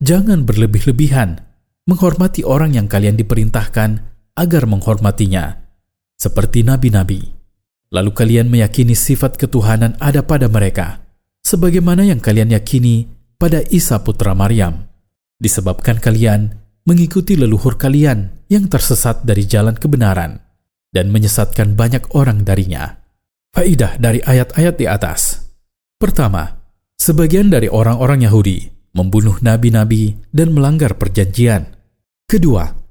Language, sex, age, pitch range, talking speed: Indonesian, male, 40-59, 100-135 Hz, 105 wpm